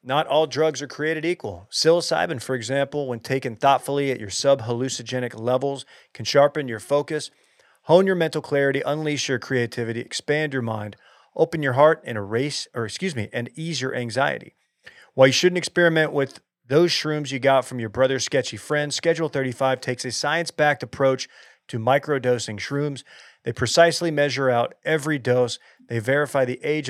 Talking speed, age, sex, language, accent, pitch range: 165 wpm, 40-59, male, English, American, 125-150 Hz